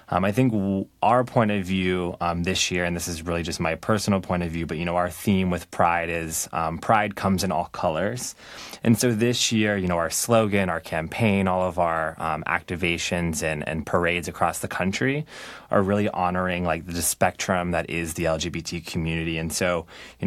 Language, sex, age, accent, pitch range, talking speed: English, male, 20-39, American, 85-95 Hz, 205 wpm